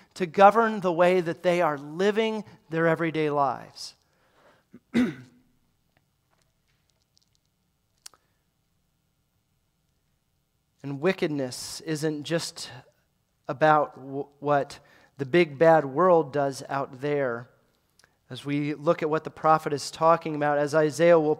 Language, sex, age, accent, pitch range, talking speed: English, male, 40-59, American, 155-205 Hz, 105 wpm